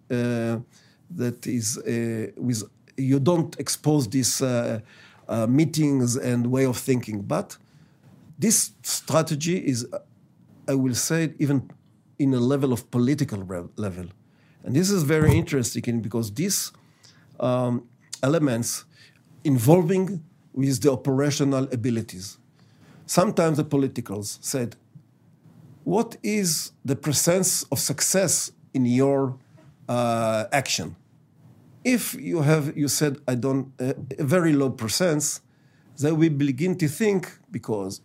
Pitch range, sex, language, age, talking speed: 125-155 Hz, male, English, 50-69, 120 wpm